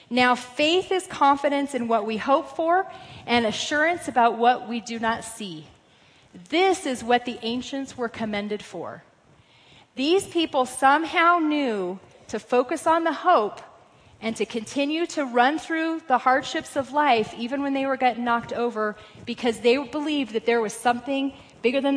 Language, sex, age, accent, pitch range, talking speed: English, female, 30-49, American, 220-275 Hz, 165 wpm